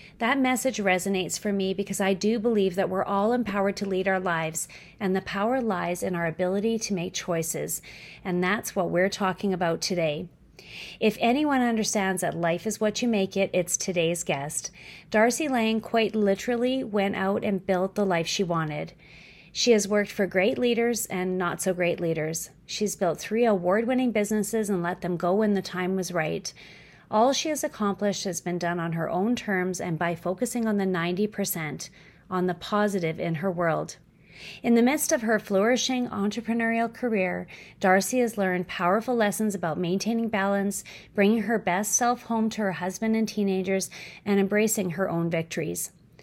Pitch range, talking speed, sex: 180-225 Hz, 180 wpm, female